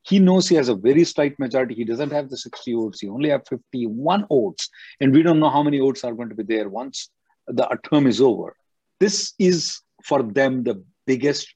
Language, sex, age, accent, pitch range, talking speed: English, male, 50-69, Indian, 120-170 Hz, 220 wpm